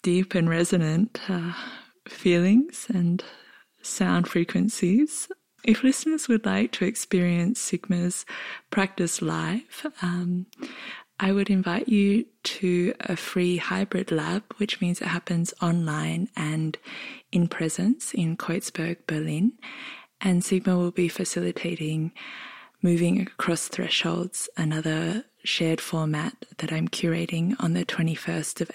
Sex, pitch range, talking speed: female, 165-200 Hz, 115 wpm